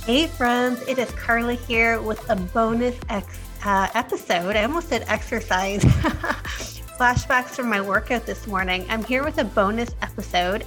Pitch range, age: 195-245 Hz, 30-49